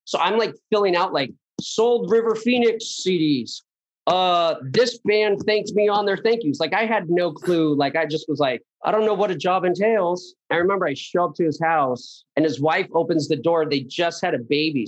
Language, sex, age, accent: English, male, 30-49, American